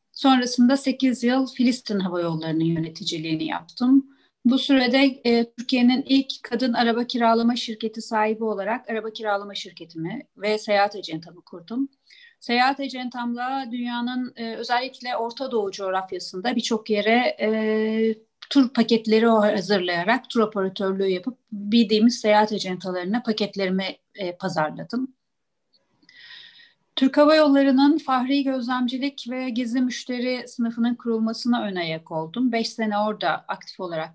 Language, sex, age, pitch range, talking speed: Turkish, female, 40-59, 205-255 Hz, 120 wpm